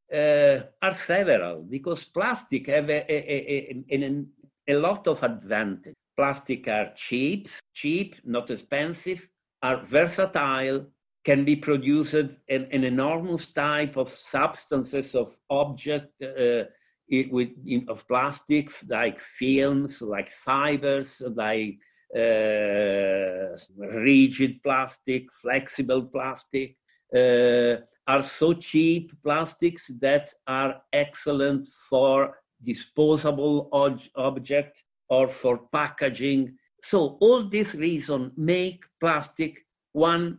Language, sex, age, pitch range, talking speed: English, male, 60-79, 130-160 Hz, 105 wpm